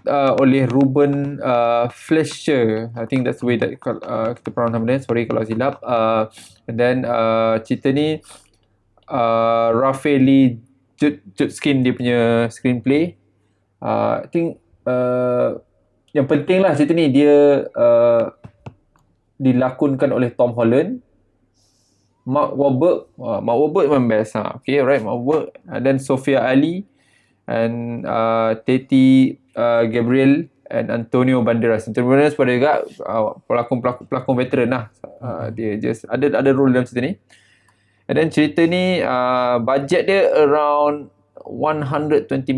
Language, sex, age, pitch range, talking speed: Malay, male, 20-39, 115-140 Hz, 140 wpm